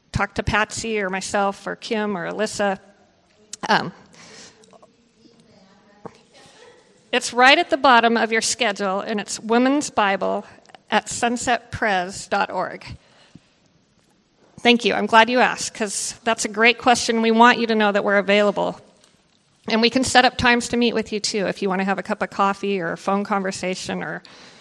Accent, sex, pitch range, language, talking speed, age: American, female, 205-250 Hz, English, 165 wpm, 40-59